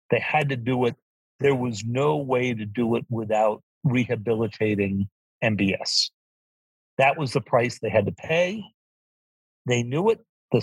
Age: 50-69